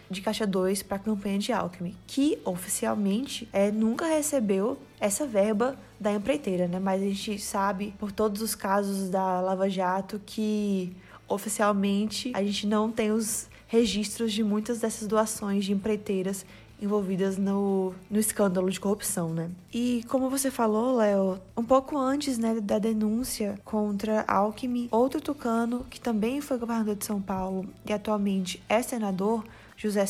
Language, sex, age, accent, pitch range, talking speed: Portuguese, female, 20-39, Brazilian, 200-235 Hz, 150 wpm